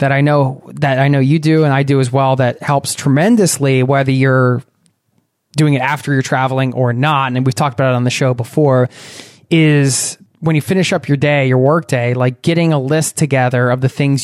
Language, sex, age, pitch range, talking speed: English, male, 20-39, 130-160 Hz, 220 wpm